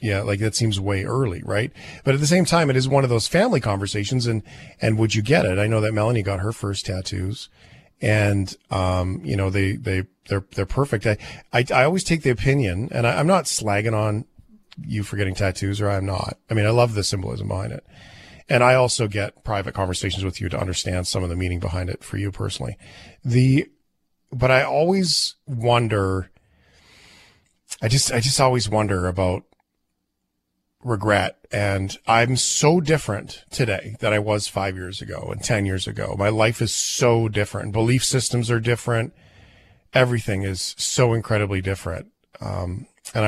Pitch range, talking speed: 95-125 Hz, 185 wpm